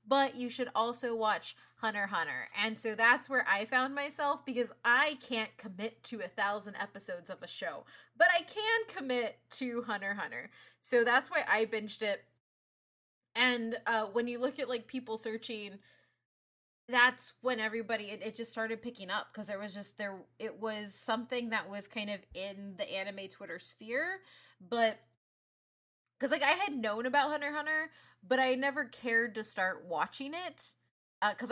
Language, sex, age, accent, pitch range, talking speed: English, female, 20-39, American, 200-255 Hz, 175 wpm